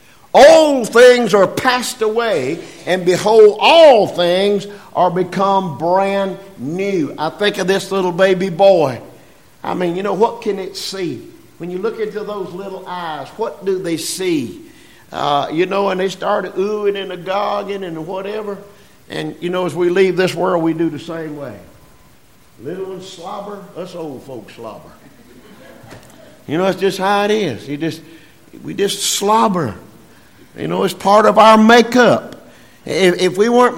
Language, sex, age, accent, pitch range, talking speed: English, male, 50-69, American, 180-225 Hz, 165 wpm